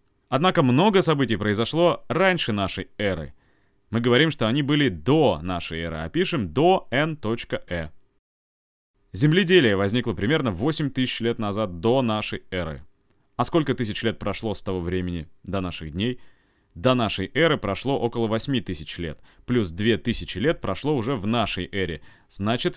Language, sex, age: Russian, male, 20-39